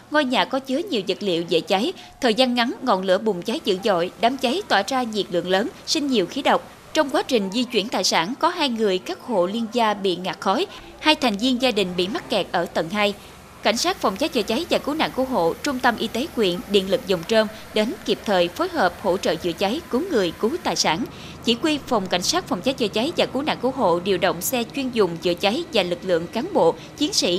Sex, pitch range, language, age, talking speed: female, 190-265 Hz, Vietnamese, 20-39, 260 wpm